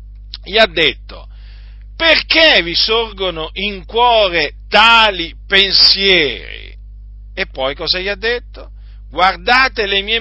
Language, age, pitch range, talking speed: Italian, 50-69, 135-215 Hz, 110 wpm